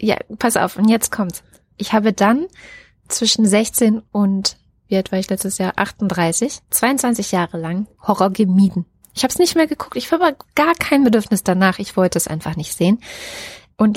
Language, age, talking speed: German, 20-39, 185 wpm